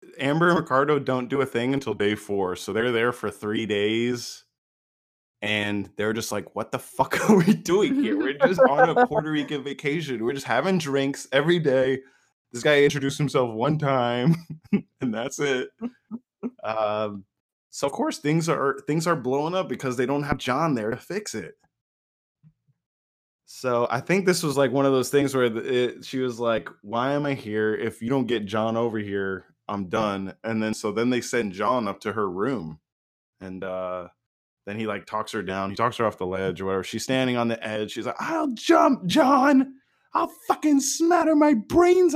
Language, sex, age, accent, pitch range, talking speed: English, male, 20-39, American, 105-165 Hz, 195 wpm